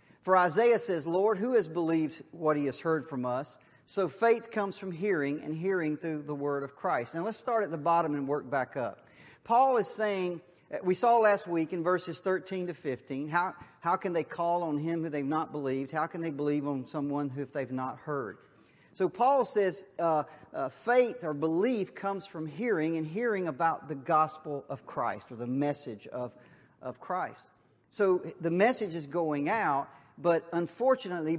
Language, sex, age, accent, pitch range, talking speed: English, male, 40-59, American, 145-190 Hz, 190 wpm